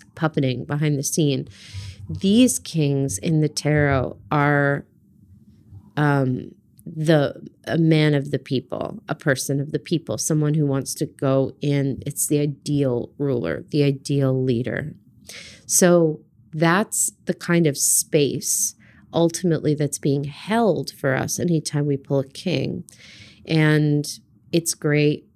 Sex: female